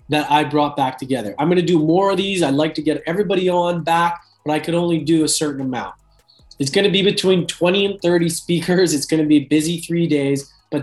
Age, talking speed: 20-39, 225 wpm